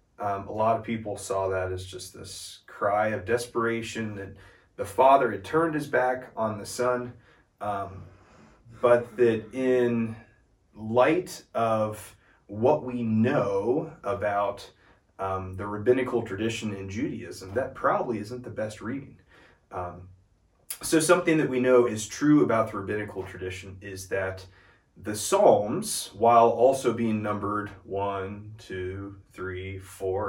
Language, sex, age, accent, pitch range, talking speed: English, male, 30-49, American, 95-120 Hz, 135 wpm